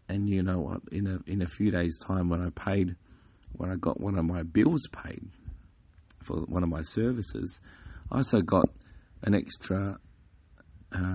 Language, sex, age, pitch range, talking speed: English, male, 40-59, 85-105 Hz, 185 wpm